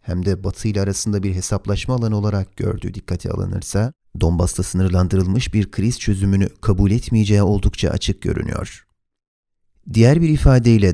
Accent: native